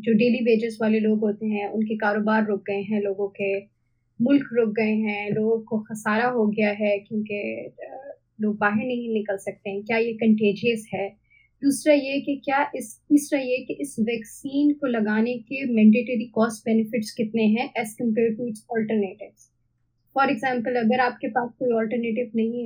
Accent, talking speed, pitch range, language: native, 175 wpm, 215-250 Hz, Hindi